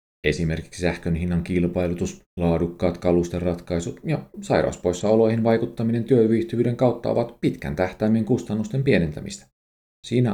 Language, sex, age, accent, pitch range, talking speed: Finnish, male, 40-59, native, 85-115 Hz, 100 wpm